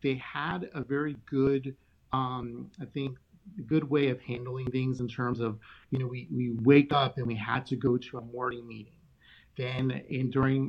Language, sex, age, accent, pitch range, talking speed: English, male, 30-49, American, 115-130 Hz, 190 wpm